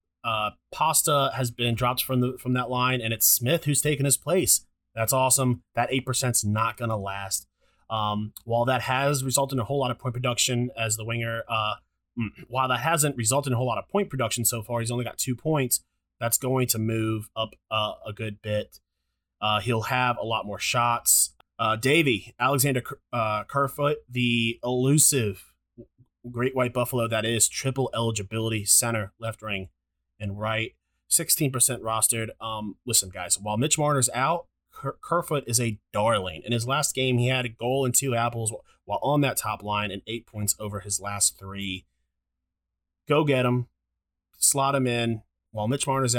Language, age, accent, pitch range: English, 30-49, American, 105-130 Hz